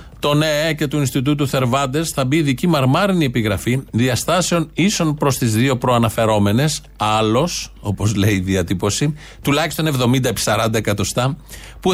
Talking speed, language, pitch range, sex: 135 wpm, Greek, 120-150 Hz, male